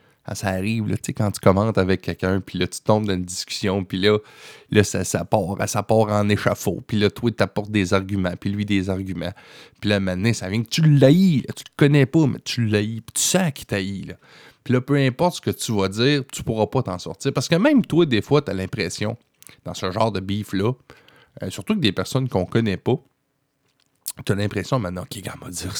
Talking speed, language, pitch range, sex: 240 wpm, French, 95-130 Hz, male